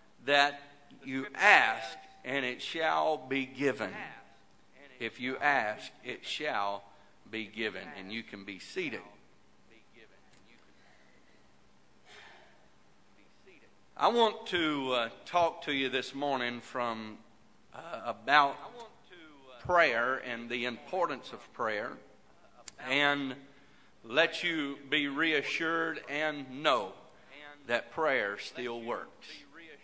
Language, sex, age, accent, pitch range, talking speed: English, male, 50-69, American, 130-165 Hz, 100 wpm